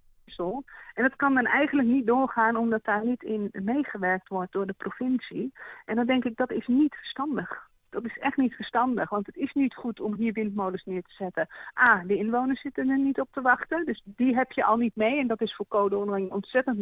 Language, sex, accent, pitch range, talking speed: Dutch, female, Dutch, 200-255 Hz, 225 wpm